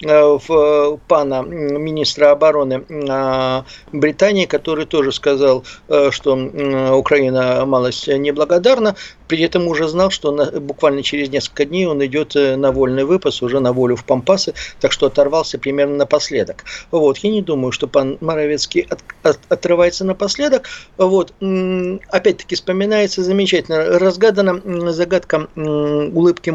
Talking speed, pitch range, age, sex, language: 120 wpm, 140-195 Hz, 50-69, male, Russian